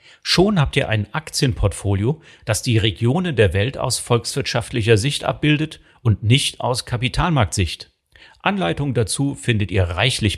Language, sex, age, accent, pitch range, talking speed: German, male, 40-59, German, 100-135 Hz, 135 wpm